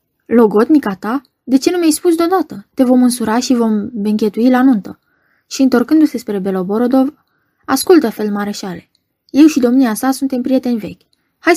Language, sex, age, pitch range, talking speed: Romanian, female, 20-39, 205-265 Hz, 160 wpm